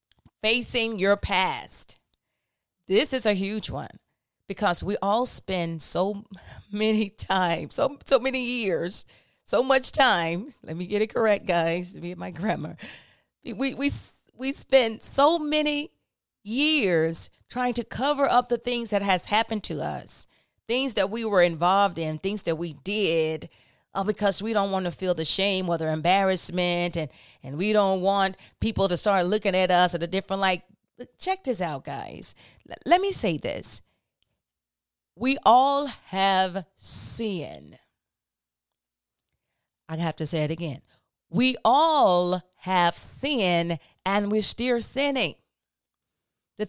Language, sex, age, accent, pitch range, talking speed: English, female, 40-59, American, 175-245 Hz, 145 wpm